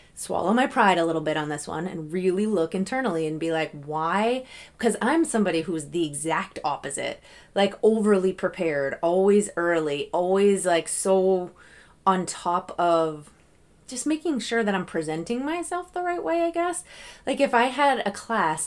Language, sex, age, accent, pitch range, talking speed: English, female, 20-39, American, 165-210 Hz, 170 wpm